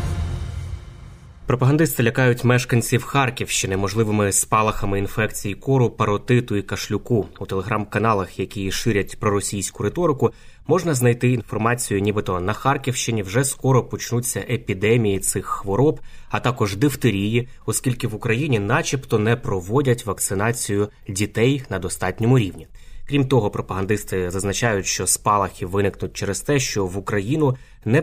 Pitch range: 100-125 Hz